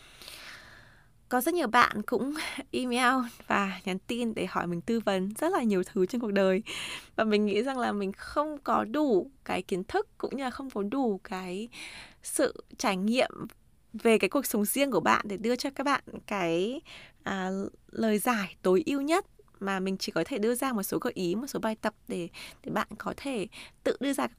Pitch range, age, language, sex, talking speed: 200-275 Hz, 20-39, Vietnamese, female, 210 wpm